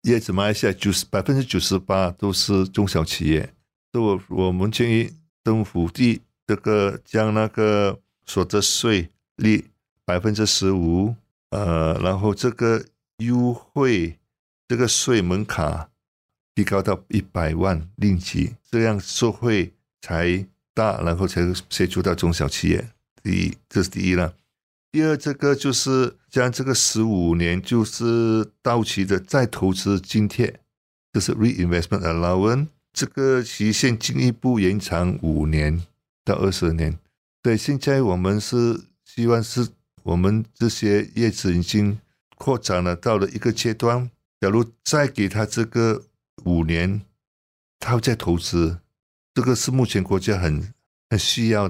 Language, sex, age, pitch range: Chinese, male, 50-69, 90-115 Hz